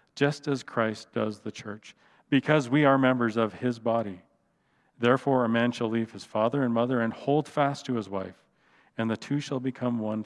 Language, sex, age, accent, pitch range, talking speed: English, male, 40-59, American, 110-125 Hz, 200 wpm